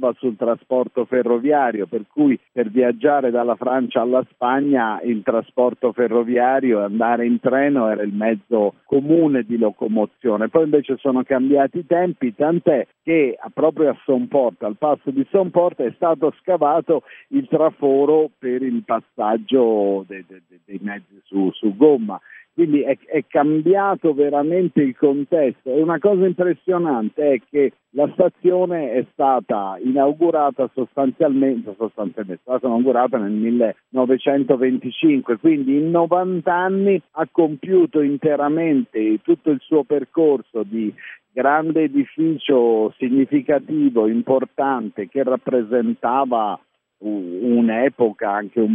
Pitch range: 120-160 Hz